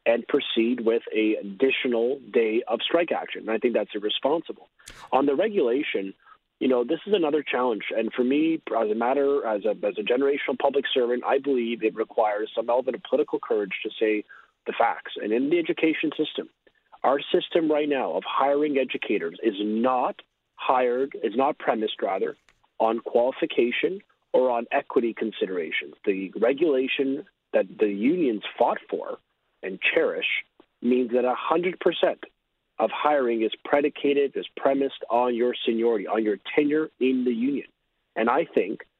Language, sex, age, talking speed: English, male, 40-59, 160 wpm